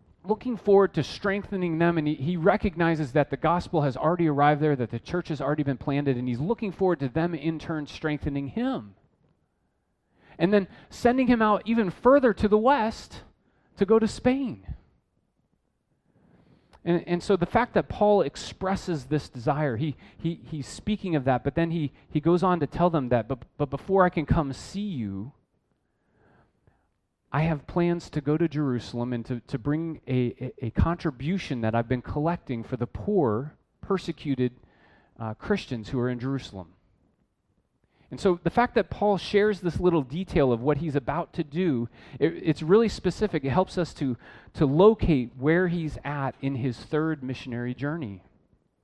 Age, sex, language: 30-49, male, English